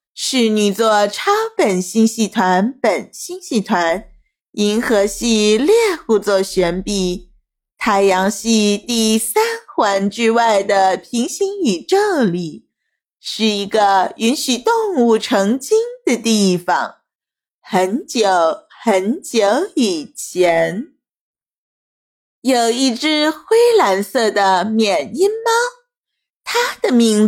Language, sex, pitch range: Chinese, female, 205-315 Hz